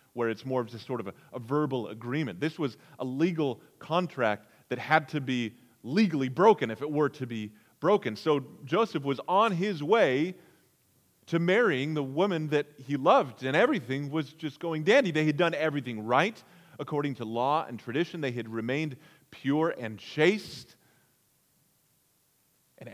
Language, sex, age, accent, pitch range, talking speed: English, male, 30-49, American, 125-155 Hz, 165 wpm